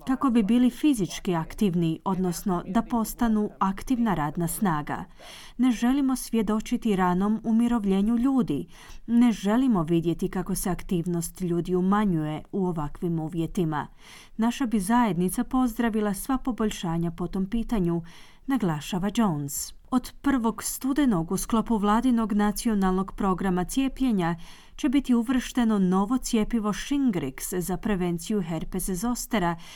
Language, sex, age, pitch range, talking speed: Croatian, female, 30-49, 185-245 Hz, 115 wpm